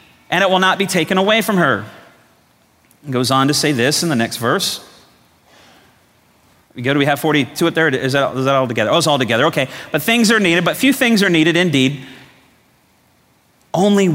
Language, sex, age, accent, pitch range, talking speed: English, male, 30-49, American, 145-215 Hz, 210 wpm